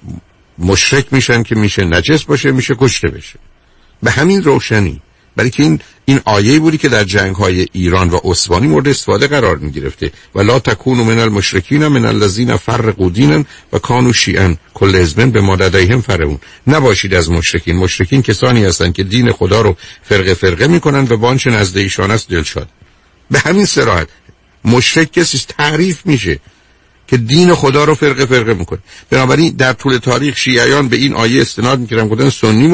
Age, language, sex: 50-69, Persian, male